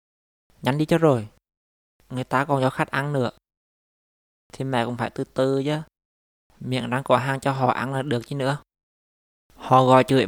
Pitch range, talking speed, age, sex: 110-135 Hz, 185 wpm, 20-39, male